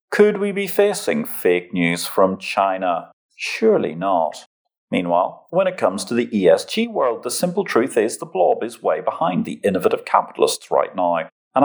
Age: 40-59